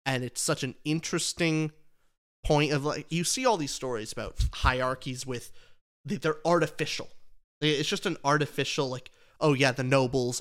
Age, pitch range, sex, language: 30-49, 125-160 Hz, male, English